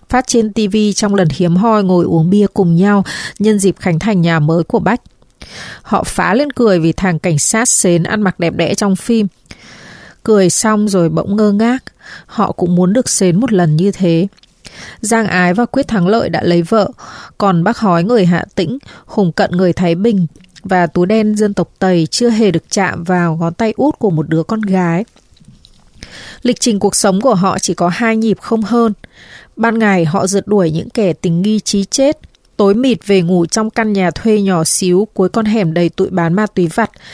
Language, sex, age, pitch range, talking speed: Vietnamese, female, 20-39, 180-225 Hz, 210 wpm